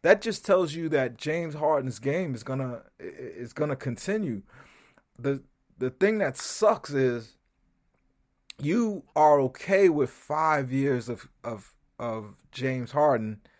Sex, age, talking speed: male, 30-49, 130 wpm